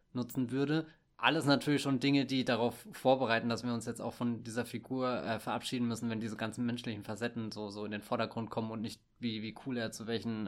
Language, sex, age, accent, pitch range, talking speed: German, male, 20-39, German, 115-140 Hz, 225 wpm